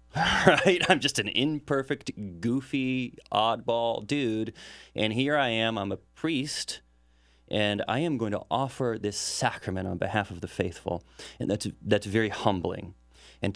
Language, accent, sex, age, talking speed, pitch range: English, American, male, 30-49, 150 wpm, 90-115 Hz